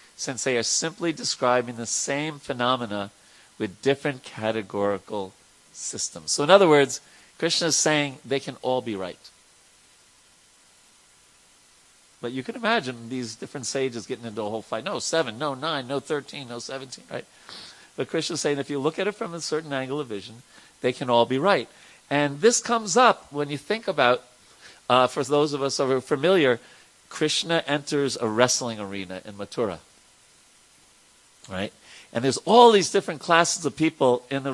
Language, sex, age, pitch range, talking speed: English, male, 40-59, 115-155 Hz, 170 wpm